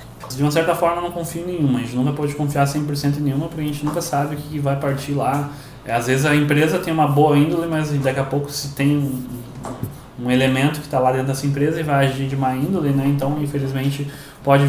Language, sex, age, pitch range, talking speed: Portuguese, male, 20-39, 125-145 Hz, 235 wpm